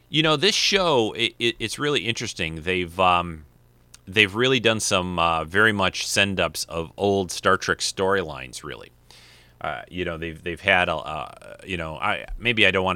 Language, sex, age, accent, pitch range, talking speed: English, male, 30-49, American, 85-115 Hz, 170 wpm